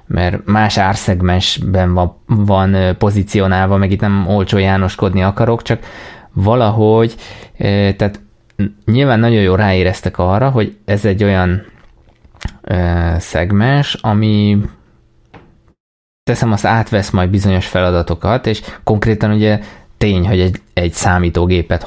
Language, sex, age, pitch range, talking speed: Hungarian, male, 20-39, 90-105 Hz, 105 wpm